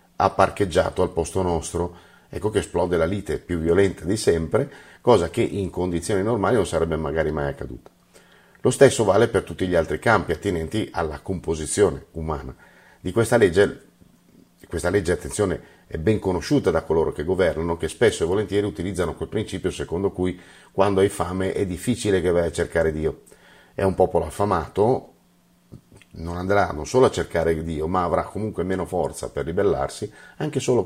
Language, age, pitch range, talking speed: Italian, 40-59, 80-100 Hz, 170 wpm